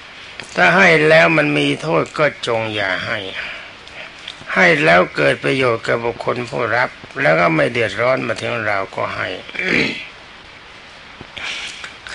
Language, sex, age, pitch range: Thai, male, 60-79, 110-155 Hz